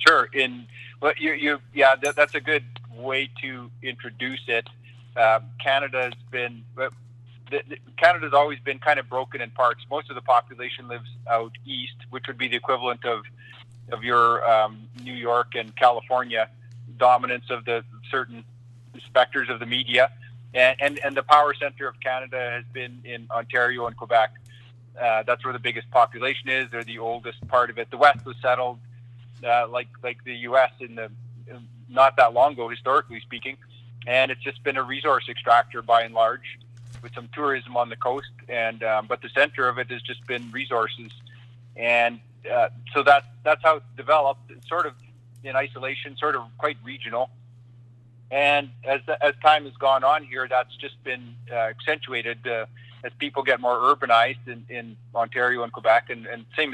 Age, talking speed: 40-59, 180 wpm